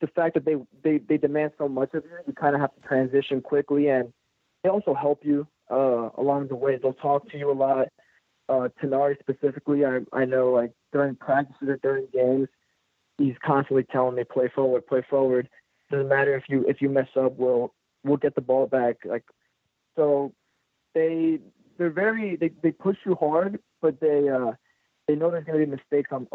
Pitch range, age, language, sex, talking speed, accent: 130-150 Hz, 20-39, English, male, 200 wpm, American